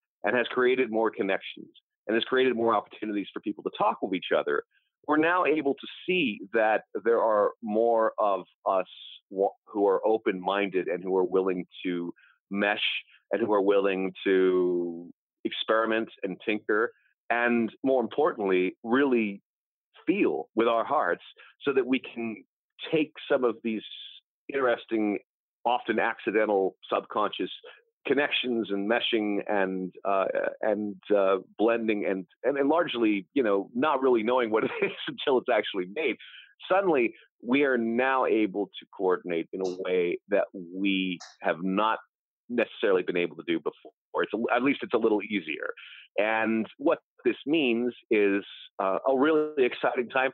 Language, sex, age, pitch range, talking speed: English, male, 40-59, 100-155 Hz, 150 wpm